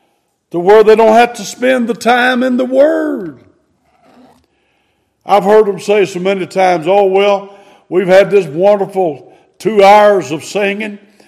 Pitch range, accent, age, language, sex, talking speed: 180-220 Hz, American, 60-79, English, male, 155 wpm